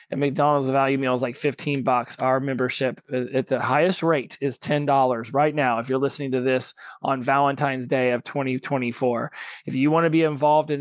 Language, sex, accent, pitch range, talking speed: English, male, American, 130-150 Hz, 190 wpm